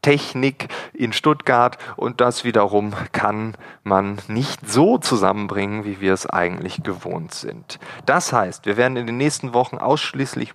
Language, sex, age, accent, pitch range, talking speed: German, male, 30-49, German, 100-135 Hz, 150 wpm